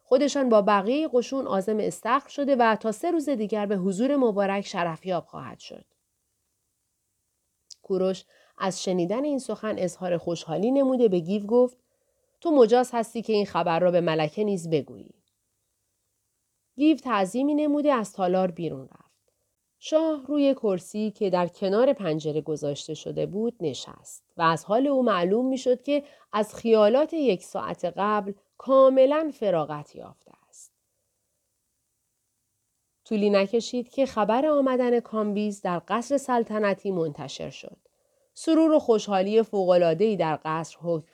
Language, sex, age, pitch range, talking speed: Persian, female, 40-59, 165-255 Hz, 135 wpm